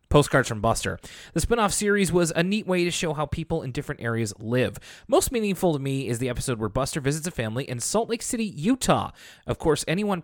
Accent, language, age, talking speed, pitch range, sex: American, English, 30-49, 225 wpm, 105-165 Hz, male